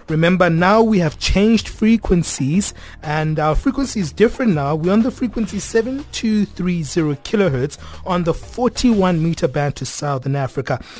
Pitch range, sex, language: 145-185 Hz, male, English